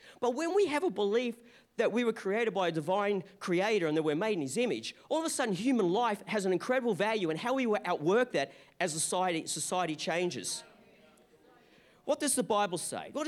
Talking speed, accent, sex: 210 wpm, Australian, male